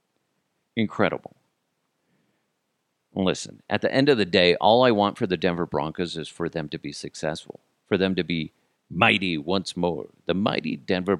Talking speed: 165 wpm